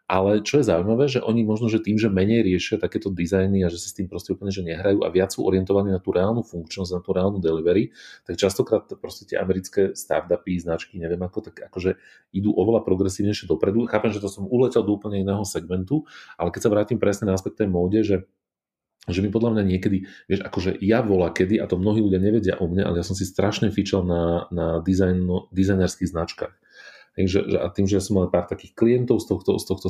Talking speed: 220 wpm